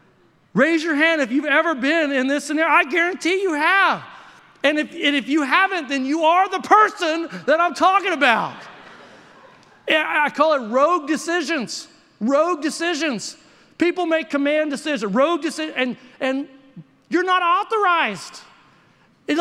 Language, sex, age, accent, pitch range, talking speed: English, male, 40-59, American, 240-325 Hz, 150 wpm